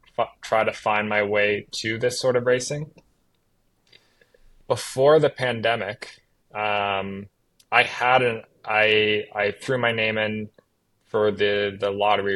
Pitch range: 100-120 Hz